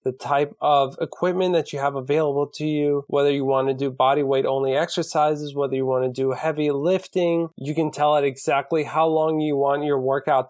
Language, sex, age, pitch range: English, male, 20-39, 140-175 Hz